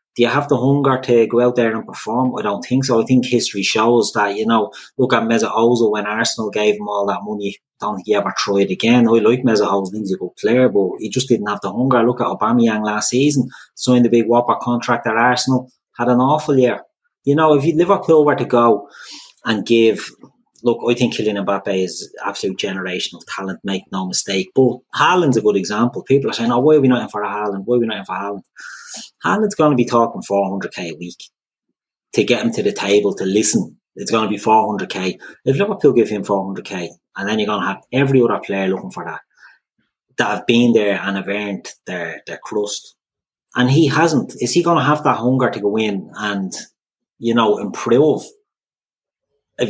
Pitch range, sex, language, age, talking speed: 105-130 Hz, male, English, 30-49, 225 wpm